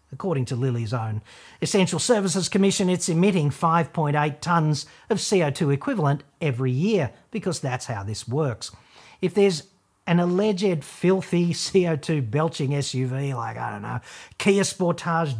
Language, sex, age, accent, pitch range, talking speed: English, male, 50-69, Australian, 130-175 Hz, 135 wpm